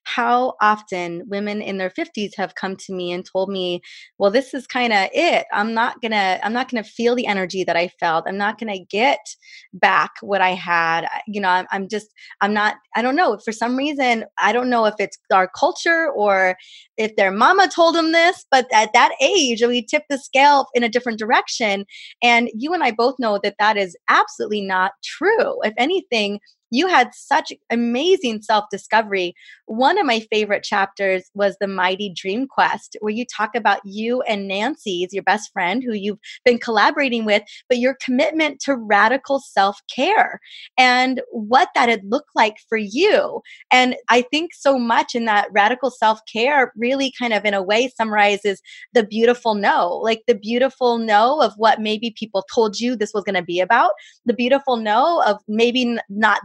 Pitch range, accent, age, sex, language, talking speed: 200-255 Hz, American, 20-39, female, English, 190 wpm